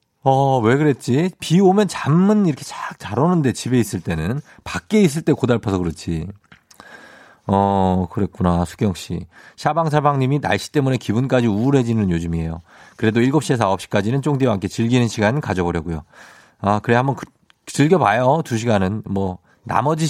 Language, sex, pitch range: Korean, male, 95-135 Hz